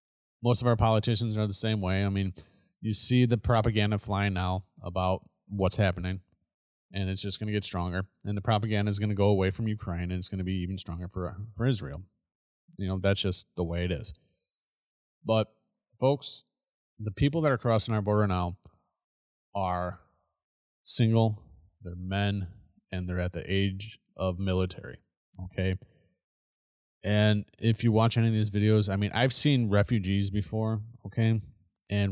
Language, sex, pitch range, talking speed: English, male, 90-110 Hz, 175 wpm